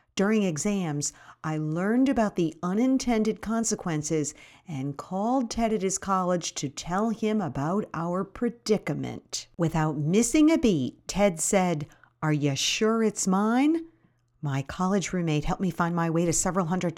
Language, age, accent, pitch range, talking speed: English, 50-69, American, 155-210 Hz, 150 wpm